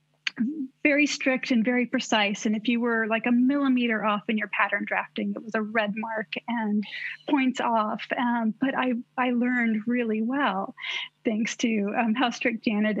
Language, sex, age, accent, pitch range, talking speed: English, female, 40-59, American, 220-270 Hz, 175 wpm